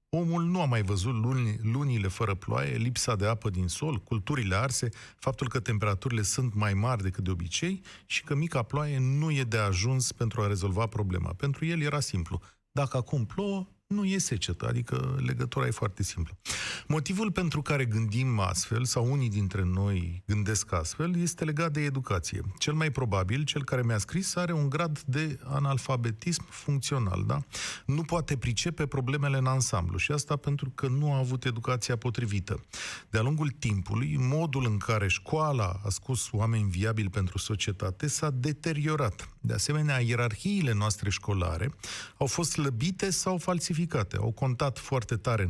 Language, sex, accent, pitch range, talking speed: Romanian, male, native, 105-155 Hz, 165 wpm